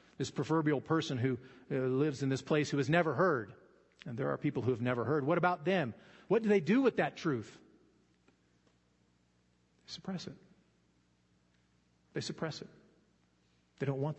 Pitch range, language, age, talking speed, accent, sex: 105-175 Hz, English, 40-59, 165 wpm, American, male